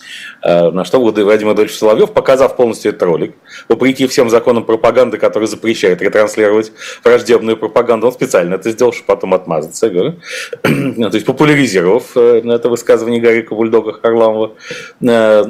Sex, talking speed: male, 130 wpm